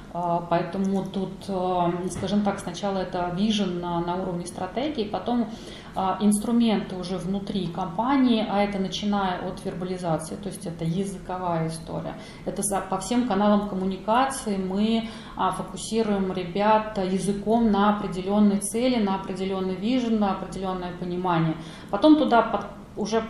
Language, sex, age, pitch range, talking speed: Russian, female, 30-49, 185-225 Hz, 125 wpm